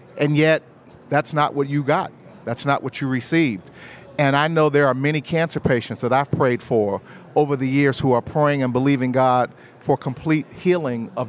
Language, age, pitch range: English, 40-59, 130-160 Hz